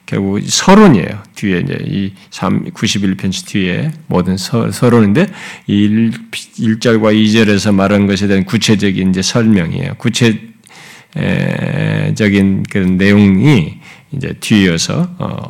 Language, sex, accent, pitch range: Korean, male, native, 100-140 Hz